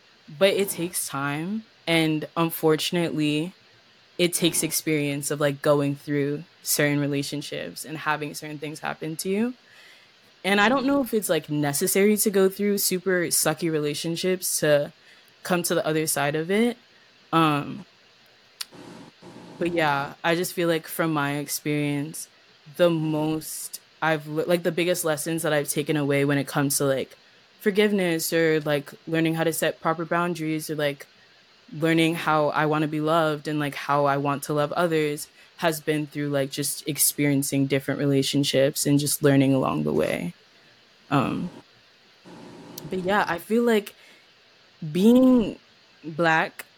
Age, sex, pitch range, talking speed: 20-39, female, 150-180 Hz, 150 wpm